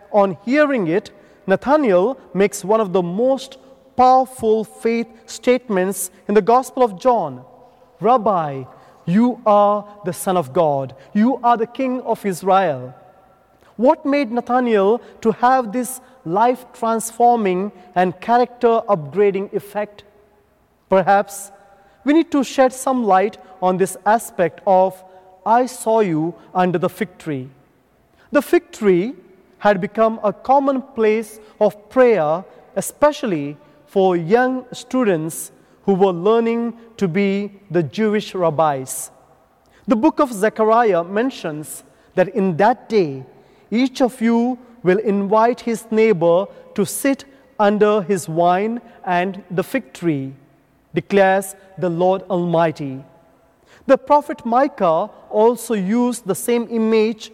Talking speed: 125 wpm